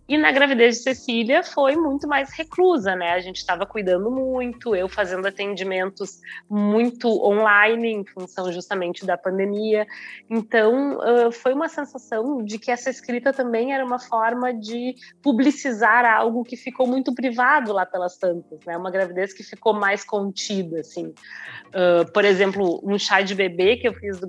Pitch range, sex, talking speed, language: 195-250 Hz, female, 165 wpm, Portuguese